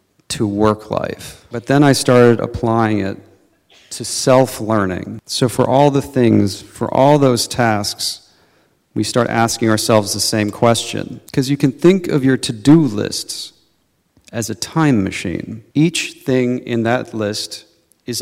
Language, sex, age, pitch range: Chinese, male, 40-59, 105-125 Hz